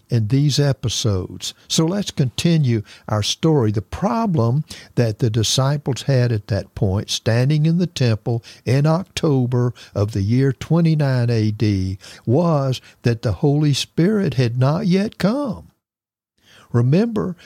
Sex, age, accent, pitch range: male, 60-79, American, 110-155 Hz